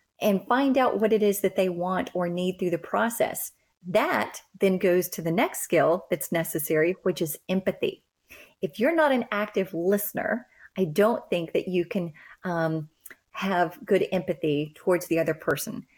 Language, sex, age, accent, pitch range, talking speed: English, female, 30-49, American, 170-205 Hz, 175 wpm